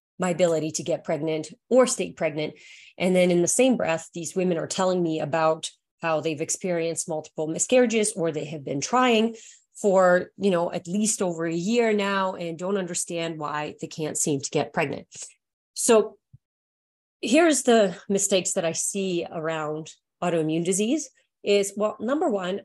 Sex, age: female, 30-49